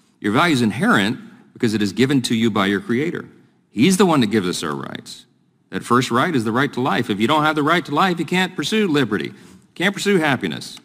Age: 40-59